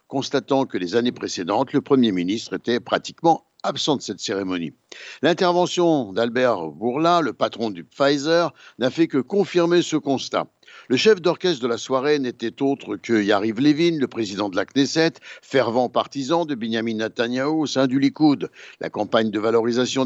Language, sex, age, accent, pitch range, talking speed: Italian, male, 60-79, French, 125-175 Hz, 170 wpm